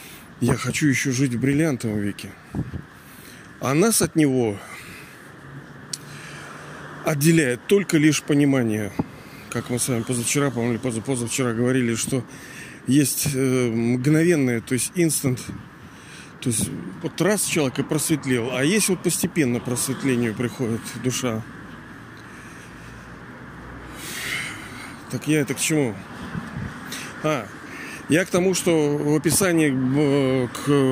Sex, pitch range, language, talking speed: male, 120-150 Hz, Russian, 110 wpm